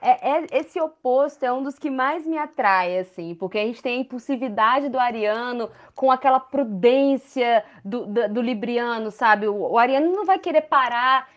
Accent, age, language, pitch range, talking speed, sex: Brazilian, 20-39, Portuguese, 225-295 Hz, 185 wpm, female